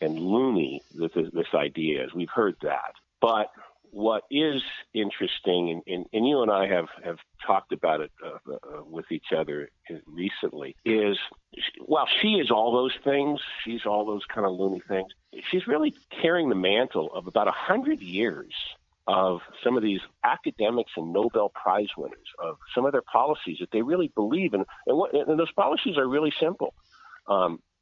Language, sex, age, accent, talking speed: English, male, 50-69, American, 175 wpm